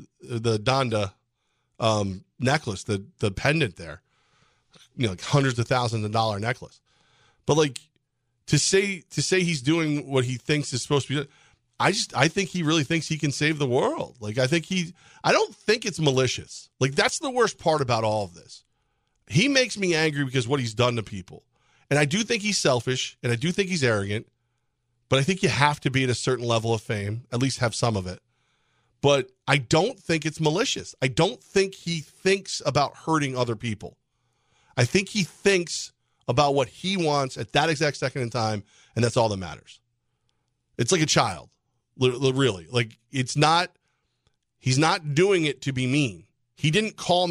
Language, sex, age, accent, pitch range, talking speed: English, male, 40-59, American, 120-160 Hz, 200 wpm